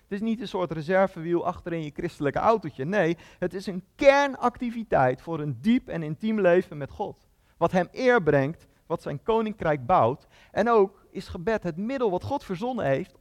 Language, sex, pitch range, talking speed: Dutch, male, 170-235 Hz, 180 wpm